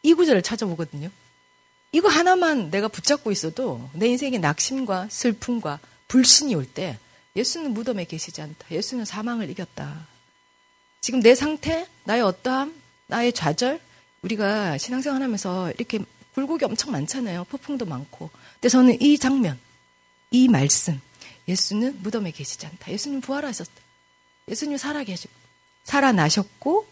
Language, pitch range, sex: Korean, 165-250 Hz, female